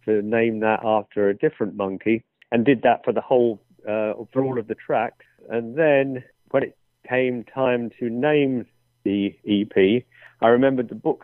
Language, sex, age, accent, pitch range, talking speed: English, male, 50-69, British, 105-120 Hz, 175 wpm